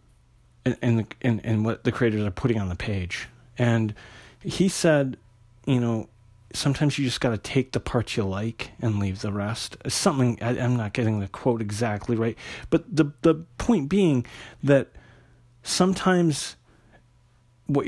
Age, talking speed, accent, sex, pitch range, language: 40-59, 160 wpm, American, male, 115-135 Hz, English